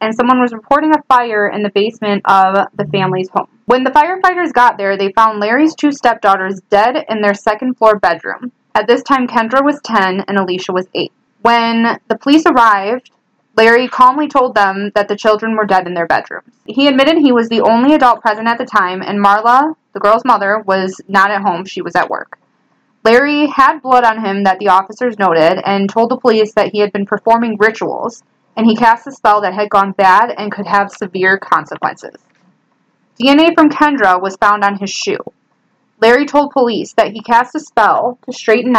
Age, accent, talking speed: 20-39, American, 200 wpm